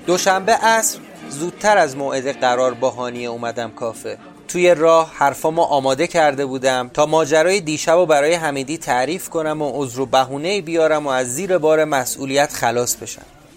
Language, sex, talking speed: Persian, male, 155 wpm